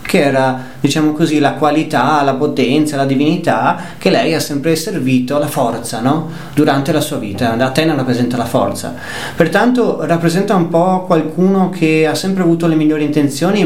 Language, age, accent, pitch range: Italian, 30-49, native, 130-165 Hz